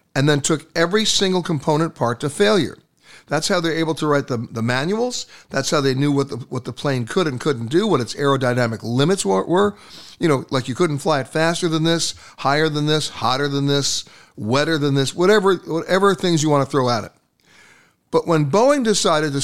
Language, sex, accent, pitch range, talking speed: English, male, American, 140-175 Hz, 215 wpm